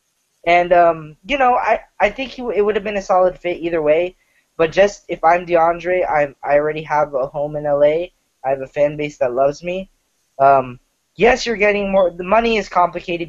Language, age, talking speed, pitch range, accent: English, 10-29, 210 wpm, 145-190 Hz, American